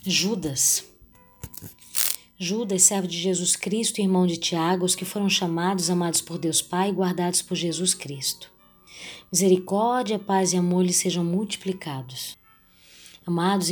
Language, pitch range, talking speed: Portuguese, 175-195 Hz, 135 wpm